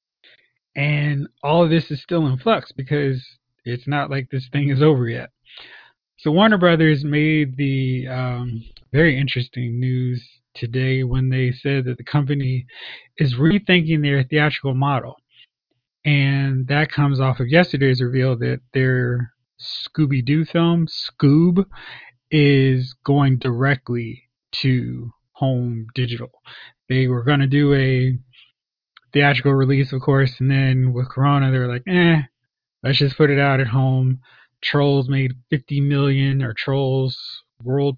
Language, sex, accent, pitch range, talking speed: English, male, American, 130-145 Hz, 135 wpm